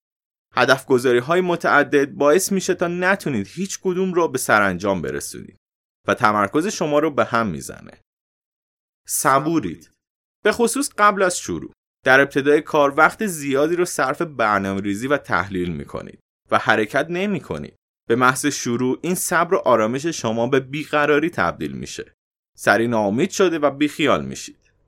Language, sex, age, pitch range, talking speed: Persian, male, 30-49, 120-185 Hz, 140 wpm